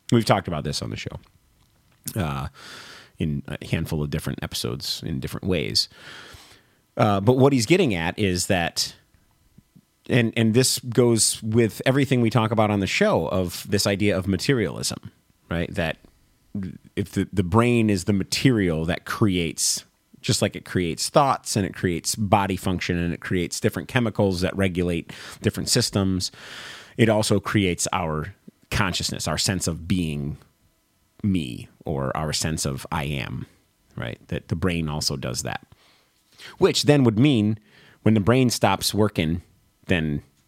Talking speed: 155 wpm